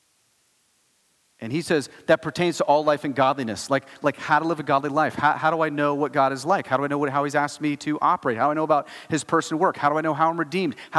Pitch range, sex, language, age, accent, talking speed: 135-175 Hz, male, English, 30-49, American, 295 wpm